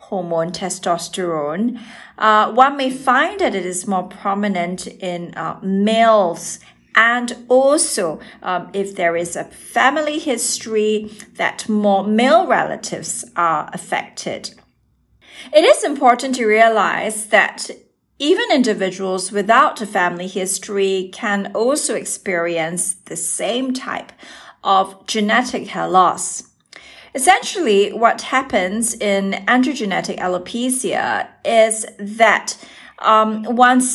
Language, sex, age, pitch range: English, female, 40-59, 190-260 Hz